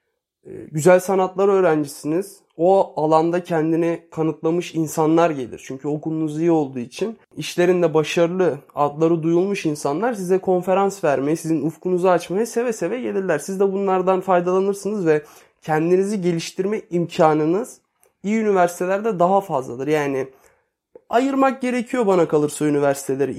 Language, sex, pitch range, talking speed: Turkish, male, 155-195 Hz, 120 wpm